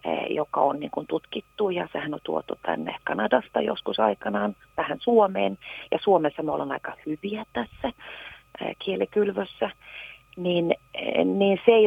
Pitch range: 150-220 Hz